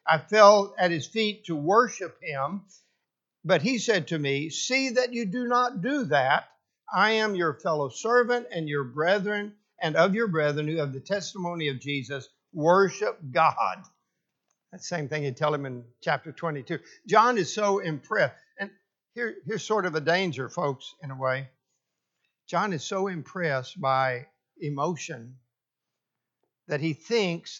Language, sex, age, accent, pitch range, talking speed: English, male, 60-79, American, 145-205 Hz, 160 wpm